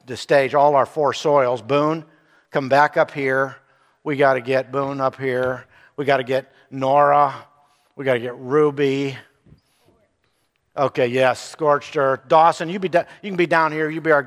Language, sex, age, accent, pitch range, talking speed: English, male, 50-69, American, 135-175 Hz, 185 wpm